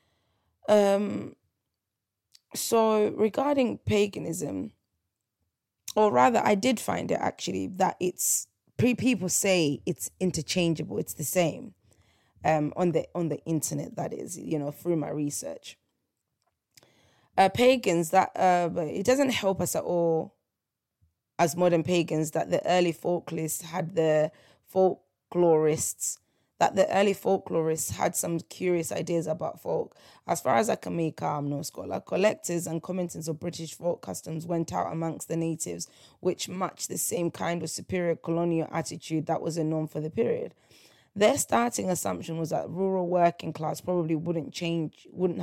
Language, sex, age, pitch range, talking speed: English, female, 20-39, 155-180 Hz, 150 wpm